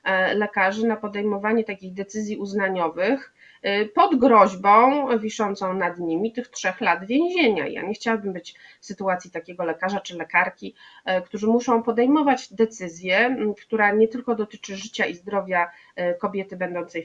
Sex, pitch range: female, 190-245 Hz